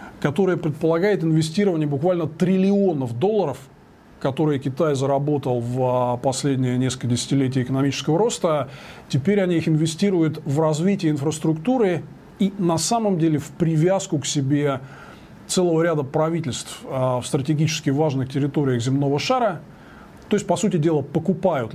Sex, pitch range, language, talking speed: male, 140-180 Hz, Russian, 125 wpm